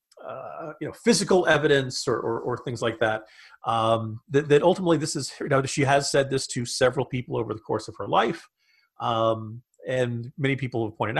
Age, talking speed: 40-59, 205 wpm